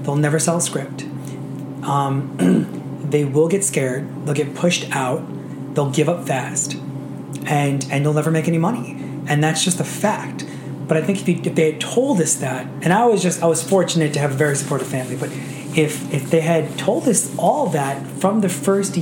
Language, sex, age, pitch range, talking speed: English, male, 30-49, 140-165 Hz, 210 wpm